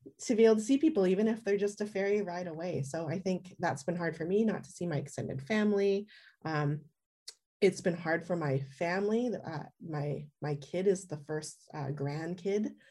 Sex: female